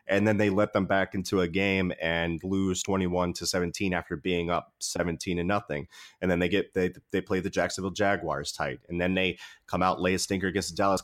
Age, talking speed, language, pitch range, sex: 30-49, 235 wpm, English, 90-105 Hz, male